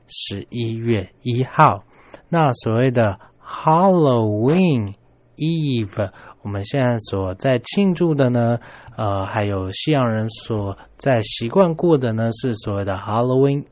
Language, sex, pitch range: Chinese, male, 105-140 Hz